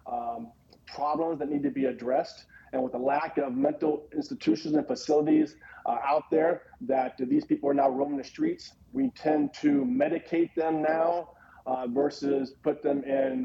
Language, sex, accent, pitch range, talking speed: English, male, American, 145-185 Hz, 170 wpm